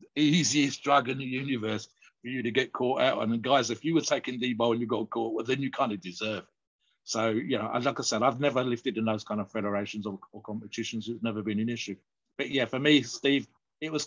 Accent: British